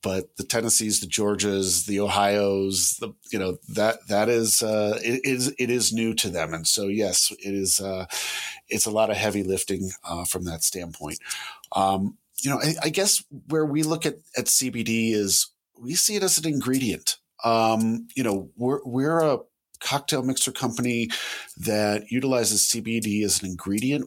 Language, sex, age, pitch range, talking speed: English, male, 40-59, 95-115 Hz, 175 wpm